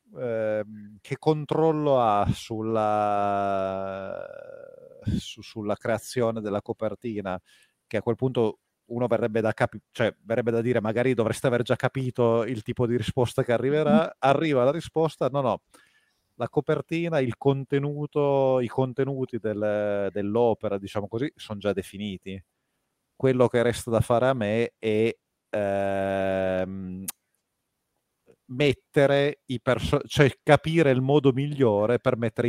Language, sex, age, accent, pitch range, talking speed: Italian, male, 30-49, native, 105-135 Hz, 130 wpm